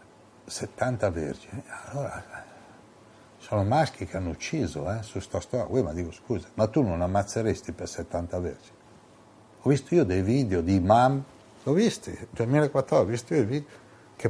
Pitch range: 95-120 Hz